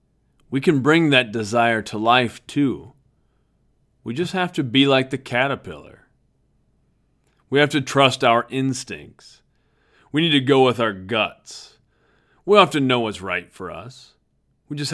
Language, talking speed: English, 155 wpm